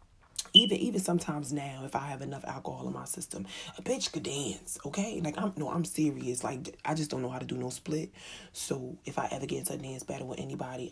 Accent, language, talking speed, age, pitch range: American, English, 235 wpm, 30-49, 135-175 Hz